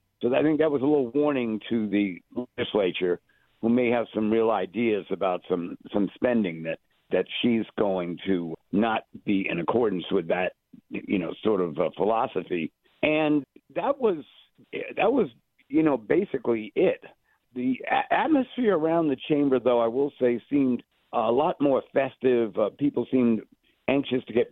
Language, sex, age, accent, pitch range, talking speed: English, male, 60-79, American, 115-150 Hz, 160 wpm